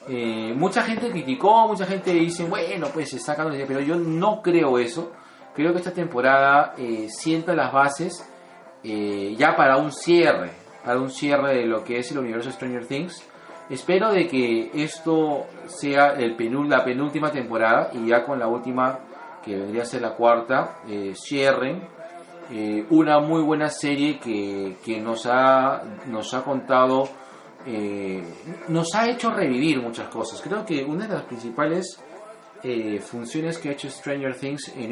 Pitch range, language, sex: 115-165 Hz, Spanish, male